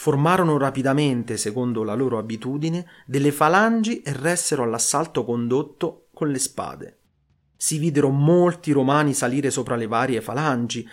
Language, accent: Italian, native